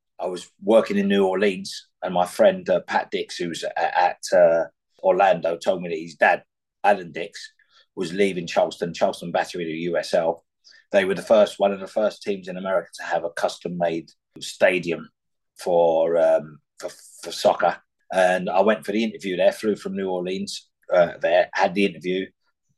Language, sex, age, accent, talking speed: English, male, 30-49, British, 180 wpm